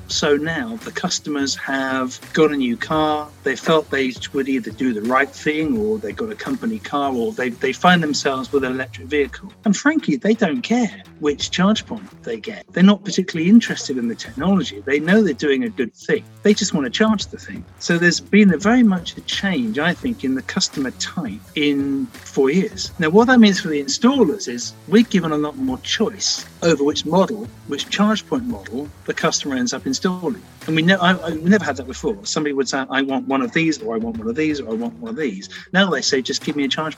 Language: English